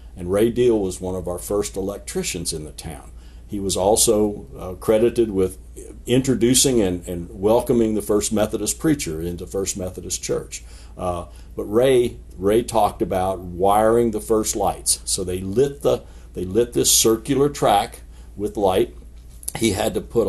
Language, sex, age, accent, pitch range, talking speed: English, male, 60-79, American, 90-115 Hz, 165 wpm